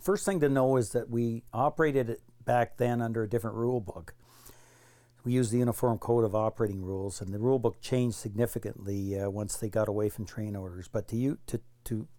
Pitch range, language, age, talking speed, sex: 110-125 Hz, English, 60-79, 210 wpm, male